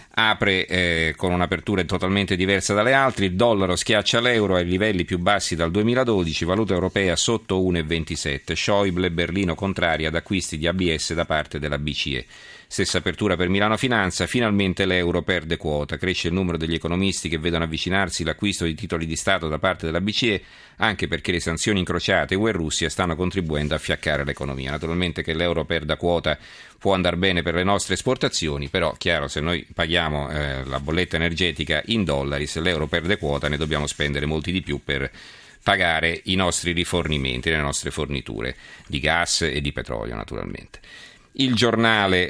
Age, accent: 40-59, native